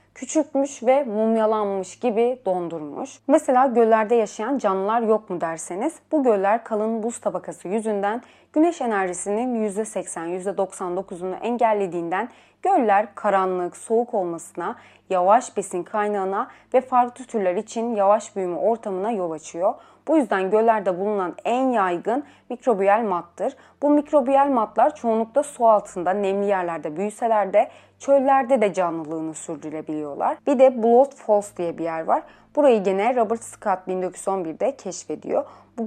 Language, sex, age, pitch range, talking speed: Turkish, female, 30-49, 185-240 Hz, 125 wpm